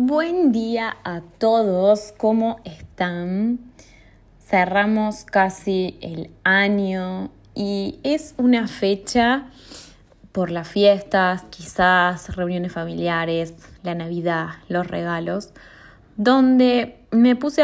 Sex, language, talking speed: female, Spanish, 90 wpm